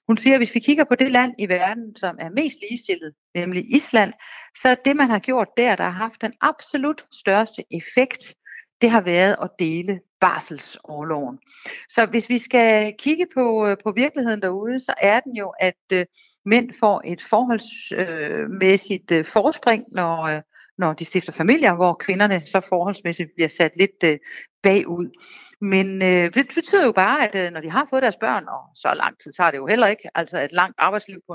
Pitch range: 170-235 Hz